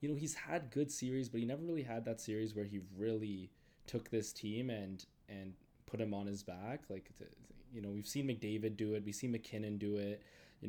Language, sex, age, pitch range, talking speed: English, male, 20-39, 100-115 Hz, 230 wpm